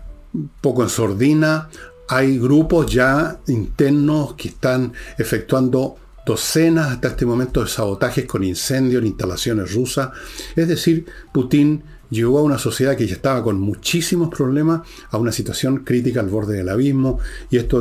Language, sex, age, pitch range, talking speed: Spanish, male, 50-69, 115-145 Hz, 150 wpm